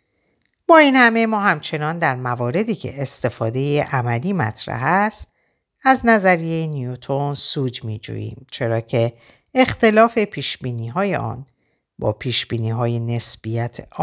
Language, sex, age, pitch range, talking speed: Persian, female, 50-69, 115-180 Hz, 105 wpm